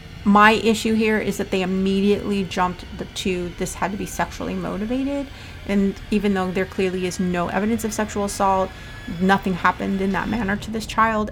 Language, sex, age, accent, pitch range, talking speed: English, female, 30-49, American, 195-215 Hz, 180 wpm